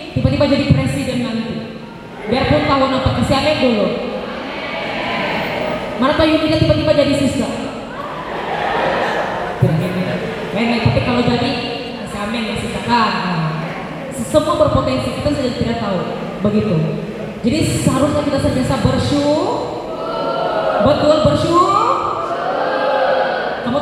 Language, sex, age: Indonesian, female, 20-39